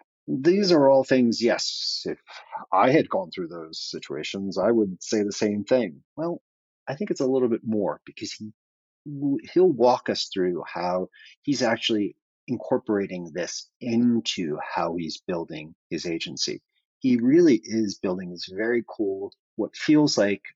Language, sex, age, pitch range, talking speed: English, male, 40-59, 95-135 Hz, 155 wpm